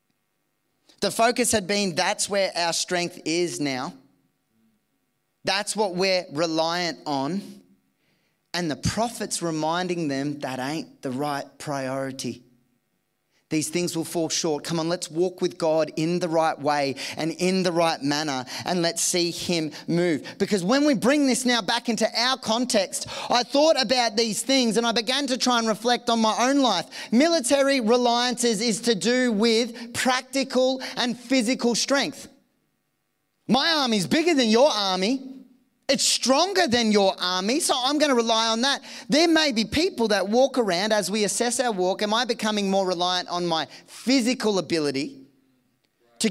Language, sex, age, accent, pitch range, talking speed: English, male, 30-49, Australian, 160-240 Hz, 165 wpm